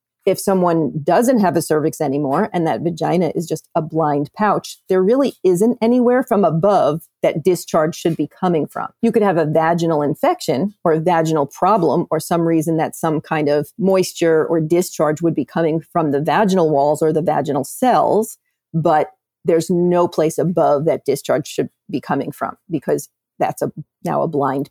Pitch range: 155-190 Hz